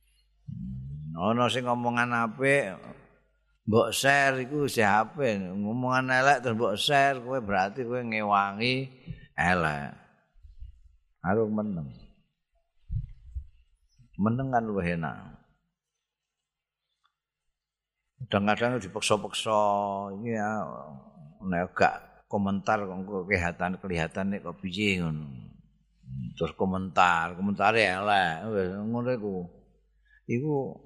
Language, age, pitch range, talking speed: Indonesian, 50-69, 90-125 Hz, 85 wpm